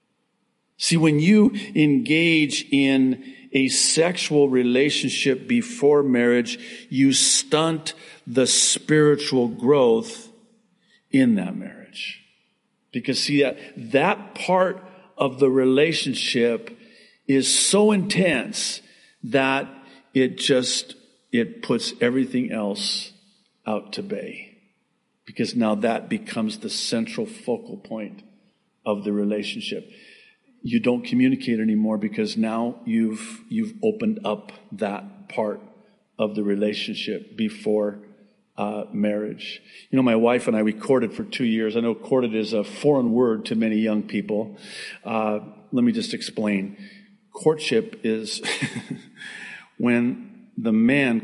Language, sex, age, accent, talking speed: English, male, 50-69, American, 115 wpm